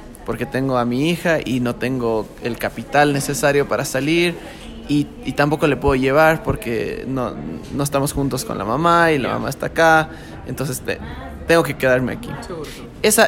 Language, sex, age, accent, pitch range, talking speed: English, male, 20-39, Mexican, 130-165 Hz, 175 wpm